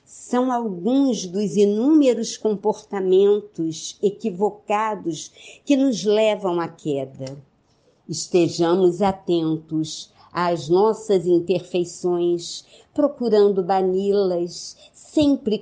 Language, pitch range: Portuguese, 160-205 Hz